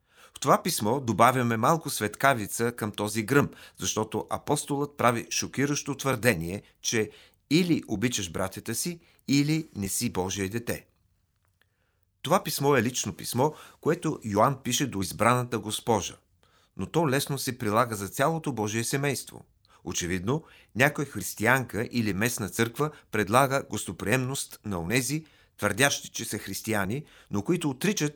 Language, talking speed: Bulgarian, 130 wpm